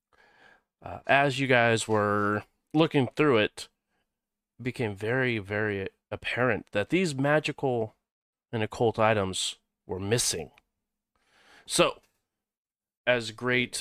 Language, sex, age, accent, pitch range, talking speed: English, male, 30-49, American, 105-130 Hz, 105 wpm